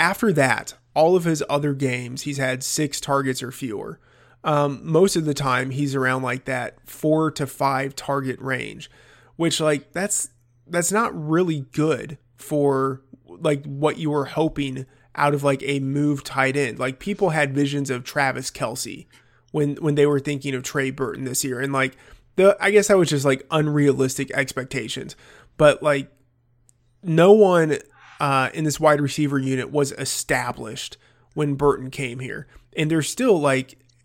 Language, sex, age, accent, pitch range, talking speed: English, male, 20-39, American, 130-150 Hz, 165 wpm